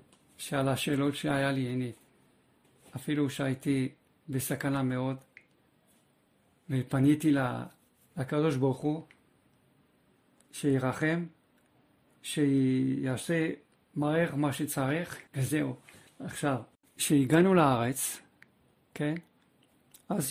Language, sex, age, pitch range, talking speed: Hebrew, male, 50-69, 130-150 Hz, 70 wpm